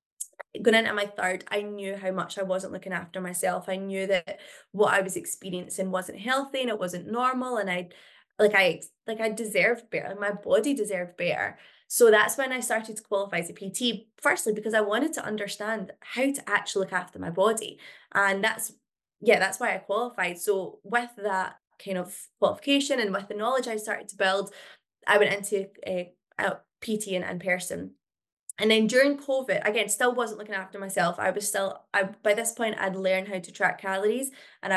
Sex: female